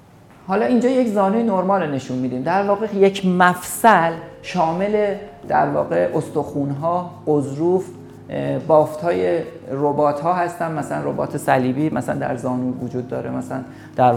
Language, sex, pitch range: Persian, male, 135-195 Hz